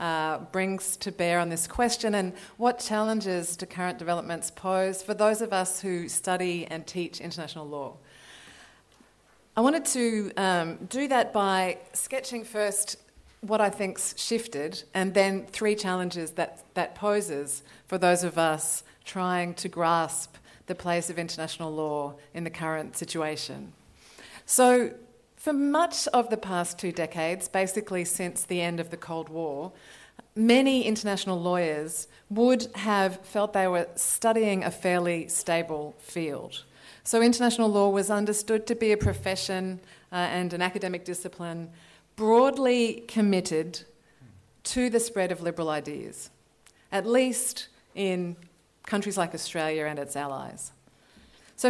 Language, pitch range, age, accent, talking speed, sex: English, 170-220 Hz, 30-49, Australian, 140 wpm, female